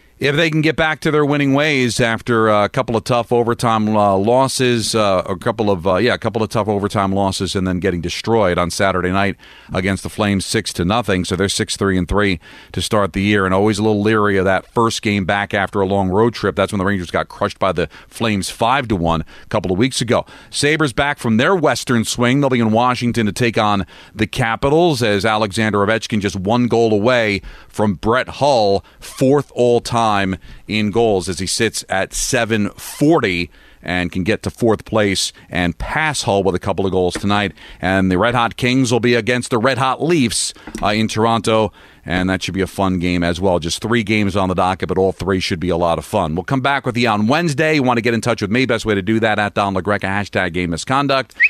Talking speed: 230 wpm